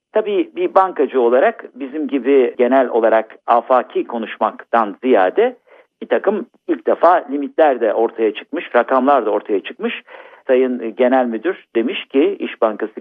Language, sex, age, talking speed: Turkish, male, 50-69, 140 wpm